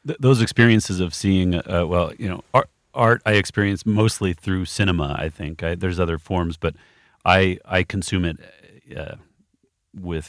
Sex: male